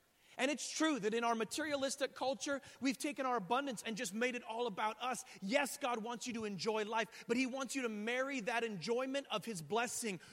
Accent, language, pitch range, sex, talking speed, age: American, English, 175-260 Hz, male, 215 wpm, 30-49